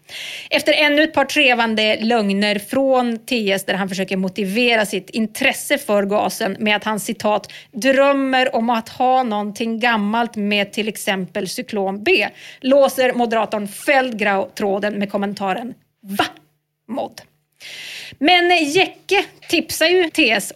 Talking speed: 130 wpm